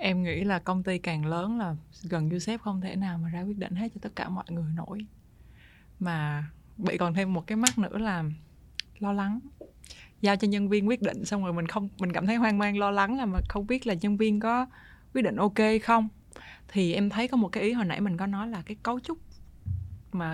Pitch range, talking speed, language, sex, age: 170-215 Hz, 240 wpm, Vietnamese, female, 20-39